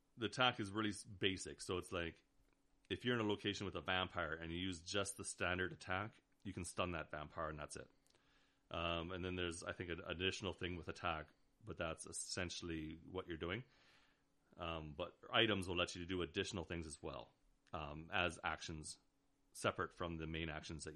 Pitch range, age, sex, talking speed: 85-100 Hz, 30-49, male, 195 wpm